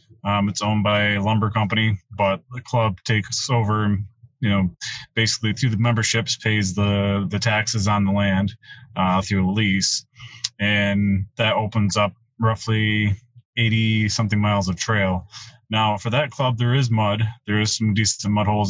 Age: 20-39